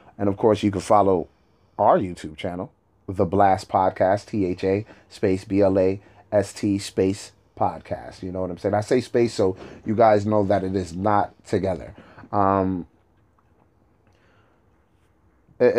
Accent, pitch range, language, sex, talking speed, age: American, 95-110 Hz, English, male, 160 wpm, 30-49